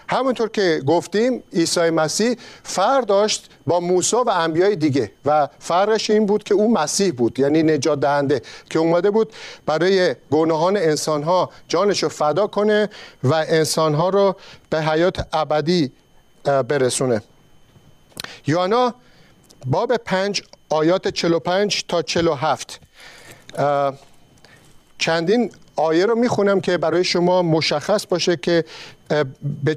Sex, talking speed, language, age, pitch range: male, 125 wpm, Persian, 50-69, 150-190 Hz